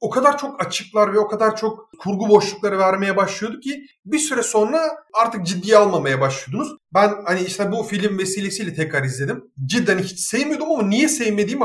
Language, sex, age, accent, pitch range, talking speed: Turkish, male, 40-59, native, 170-225 Hz, 175 wpm